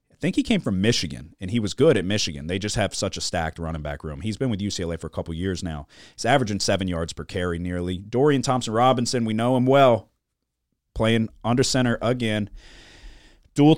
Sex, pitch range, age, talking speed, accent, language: male, 85-115 Hz, 30-49, 215 wpm, American, English